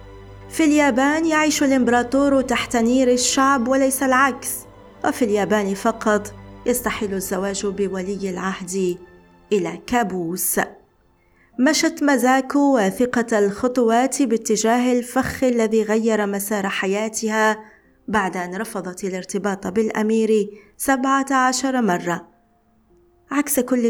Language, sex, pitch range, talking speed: Arabic, female, 195-250 Hz, 95 wpm